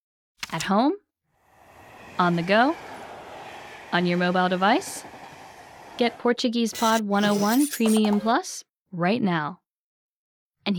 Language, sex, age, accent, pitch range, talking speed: English, female, 10-29, American, 190-275 Hz, 100 wpm